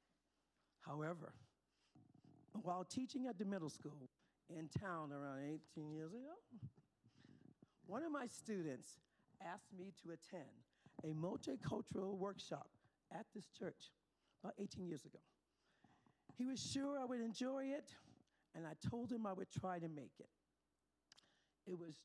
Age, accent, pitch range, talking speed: 50-69, American, 155-210 Hz, 135 wpm